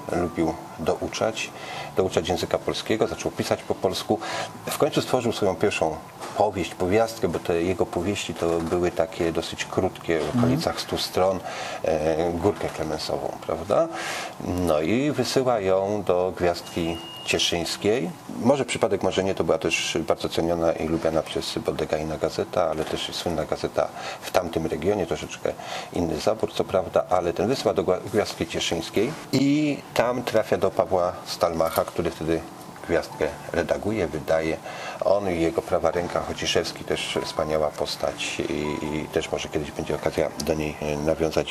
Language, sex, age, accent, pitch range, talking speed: Polish, male, 40-59, native, 85-115 Hz, 145 wpm